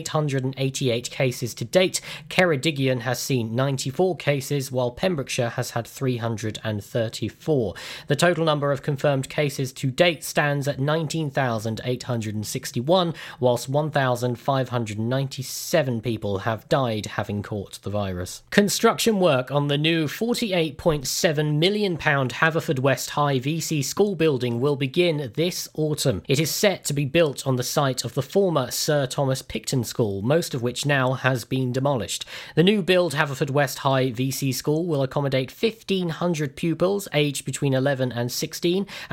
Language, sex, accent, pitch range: Japanese, male, British, 125-165 Hz